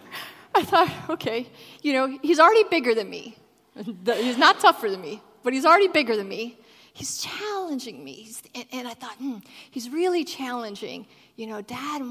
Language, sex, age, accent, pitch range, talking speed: English, female, 30-49, American, 235-320 Hz, 185 wpm